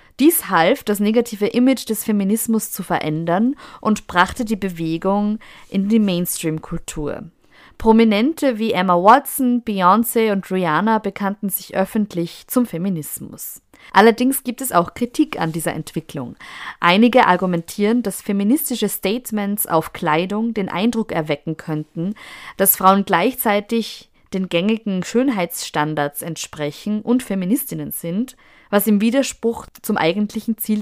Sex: female